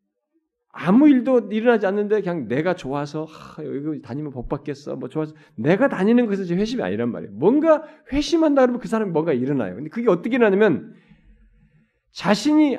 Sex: male